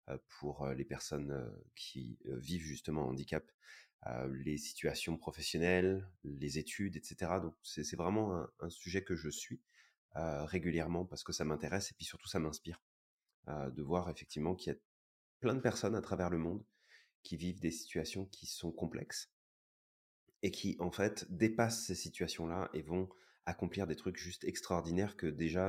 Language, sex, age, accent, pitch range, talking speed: French, male, 30-49, French, 75-95 Hz, 160 wpm